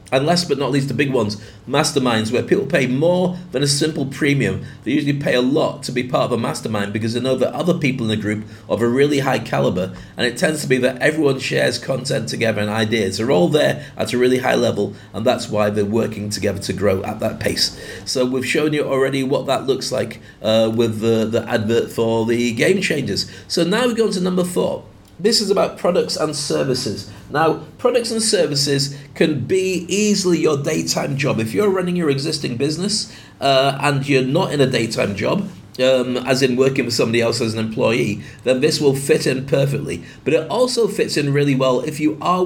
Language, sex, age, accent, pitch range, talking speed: English, male, 40-59, British, 120-155 Hz, 220 wpm